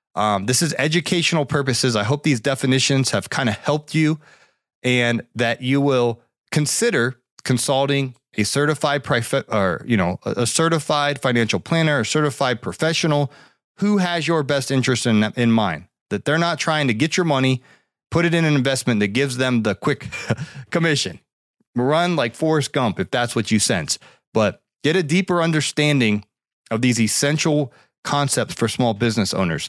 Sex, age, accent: male, 30-49, American